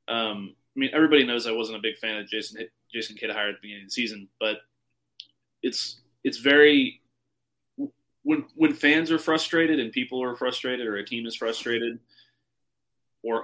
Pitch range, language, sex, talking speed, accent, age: 105-125 Hz, English, male, 180 wpm, American, 20-39